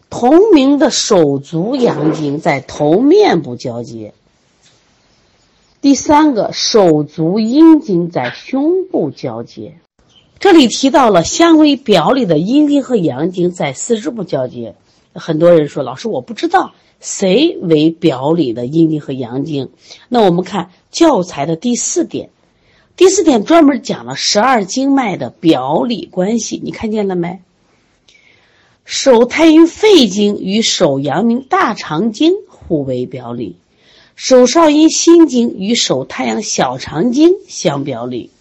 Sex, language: female, Chinese